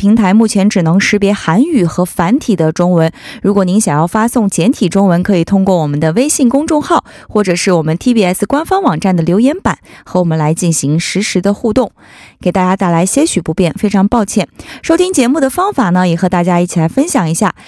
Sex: female